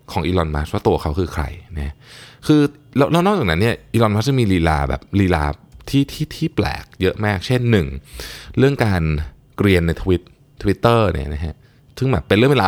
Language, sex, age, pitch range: Thai, male, 20-39, 80-120 Hz